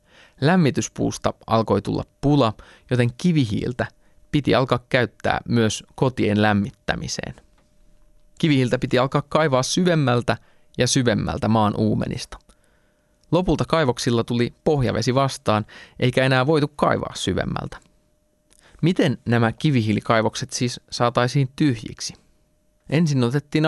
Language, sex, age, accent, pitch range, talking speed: Finnish, male, 20-39, native, 110-140 Hz, 100 wpm